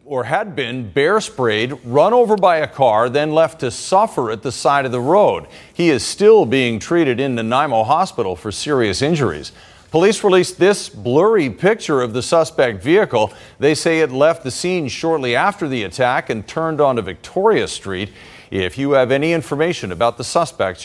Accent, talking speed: American, 180 wpm